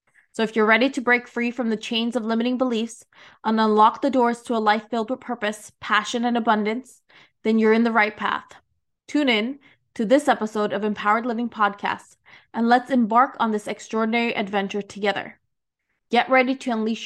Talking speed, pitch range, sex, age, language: 185 wpm, 215-255 Hz, female, 20-39, English